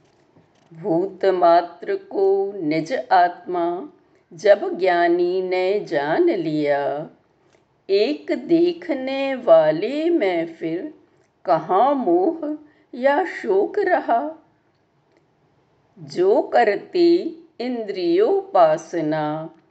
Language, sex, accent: Hindi, female, native